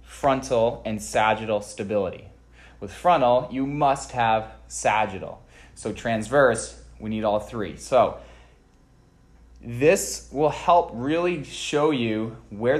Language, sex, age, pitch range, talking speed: English, male, 20-39, 105-140 Hz, 115 wpm